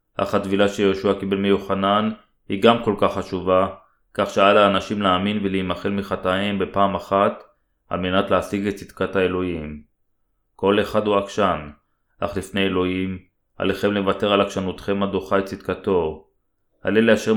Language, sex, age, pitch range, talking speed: Hebrew, male, 30-49, 95-105 Hz, 140 wpm